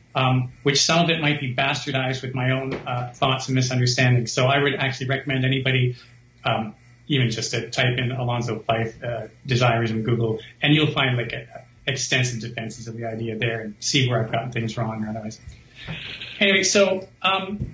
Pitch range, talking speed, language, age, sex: 120-160 Hz, 195 wpm, English, 40-59, male